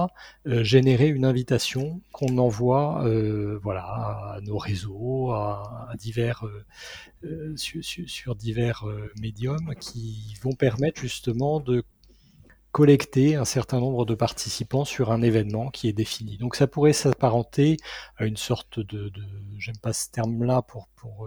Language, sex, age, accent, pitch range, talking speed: French, male, 30-49, French, 115-145 Hz, 130 wpm